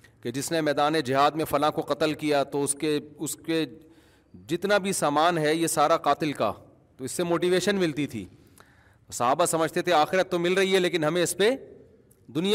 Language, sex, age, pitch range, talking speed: Urdu, male, 40-59, 125-165 Hz, 200 wpm